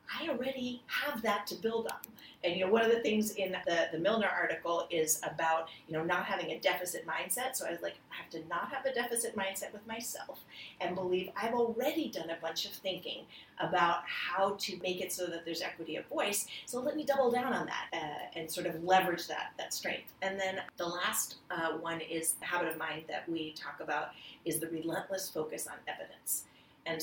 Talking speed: 220 wpm